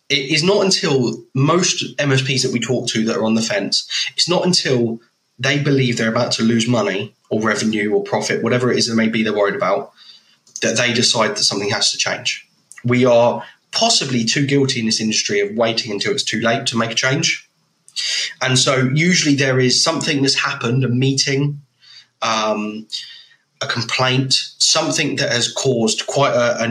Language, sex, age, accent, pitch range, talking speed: English, male, 20-39, British, 115-140 Hz, 190 wpm